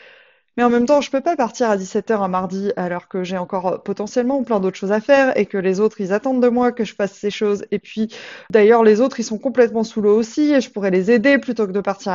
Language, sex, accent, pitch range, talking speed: French, female, French, 205-255 Hz, 275 wpm